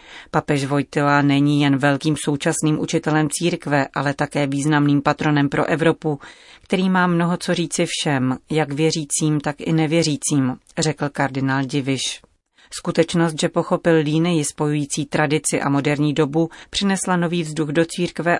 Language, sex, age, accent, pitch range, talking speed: Czech, female, 30-49, native, 145-165 Hz, 135 wpm